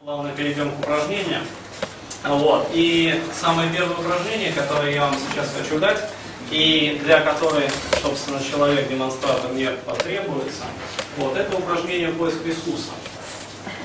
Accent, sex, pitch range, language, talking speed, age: native, male, 145-185 Hz, Russian, 125 wpm, 30-49